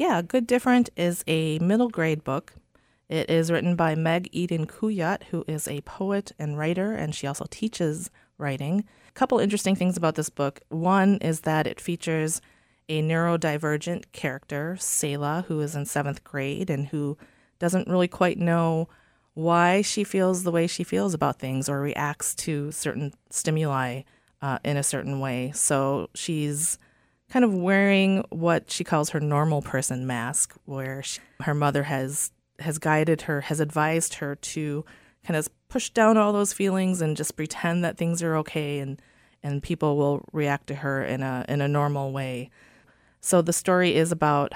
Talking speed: 170 wpm